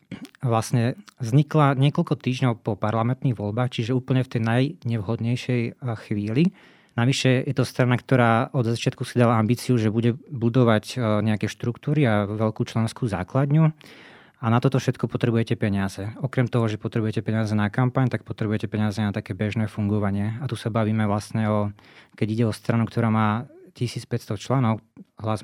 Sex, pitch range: male, 110-125 Hz